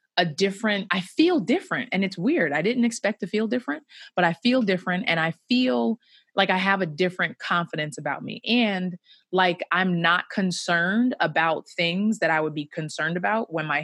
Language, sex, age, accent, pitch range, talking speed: English, female, 20-39, American, 155-205 Hz, 190 wpm